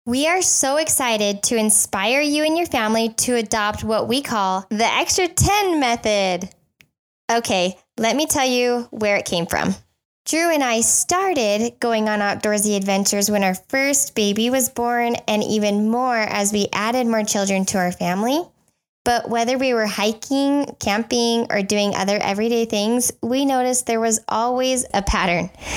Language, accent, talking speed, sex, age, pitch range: English, American, 165 wpm, female, 10-29, 205-255 Hz